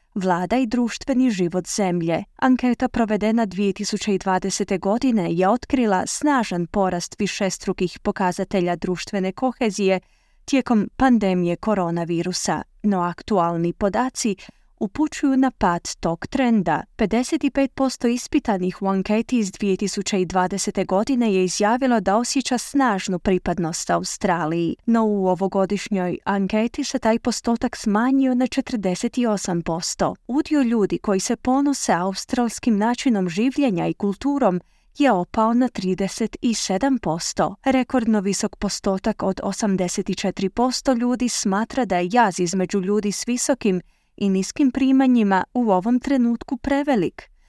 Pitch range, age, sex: 180-245 Hz, 20-39, female